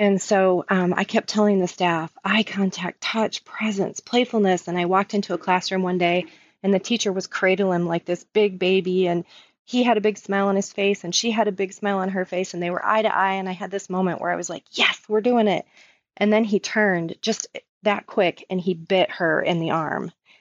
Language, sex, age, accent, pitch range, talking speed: English, female, 30-49, American, 175-200 Hz, 240 wpm